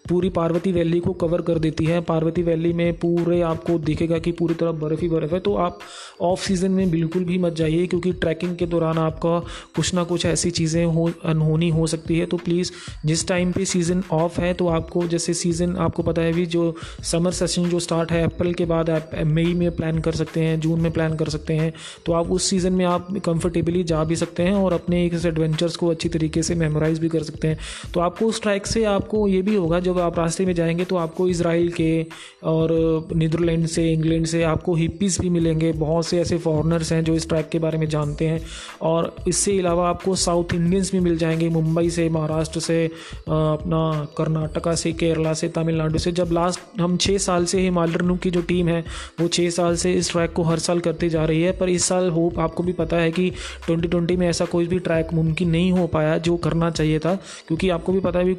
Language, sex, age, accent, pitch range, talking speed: Hindi, male, 30-49, native, 165-175 Hz, 225 wpm